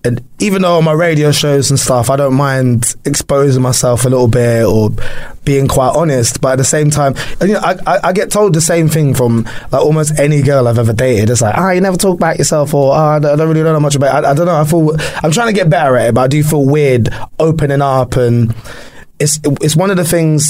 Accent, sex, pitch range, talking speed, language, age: British, male, 125-155 Hz, 270 wpm, English, 20-39